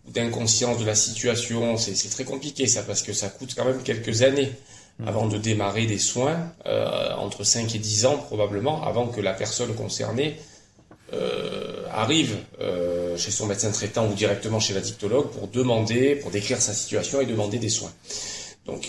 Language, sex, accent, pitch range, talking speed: French, male, French, 105-130 Hz, 180 wpm